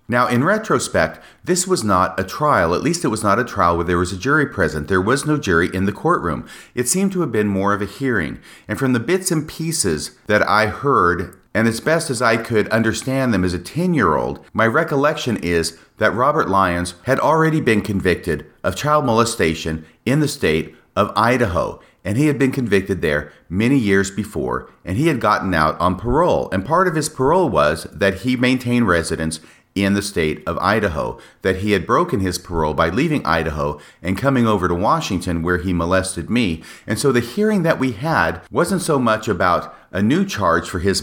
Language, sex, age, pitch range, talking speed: English, male, 40-59, 90-130 Hz, 205 wpm